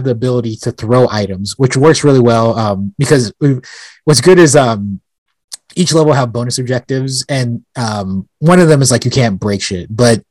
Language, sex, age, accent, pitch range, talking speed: English, male, 20-39, American, 115-140 Hz, 185 wpm